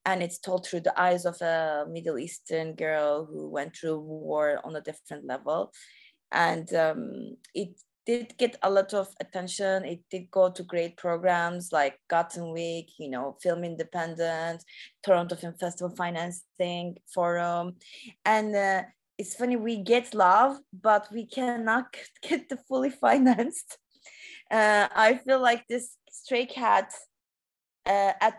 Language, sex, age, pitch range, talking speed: English, female, 20-39, 175-240 Hz, 145 wpm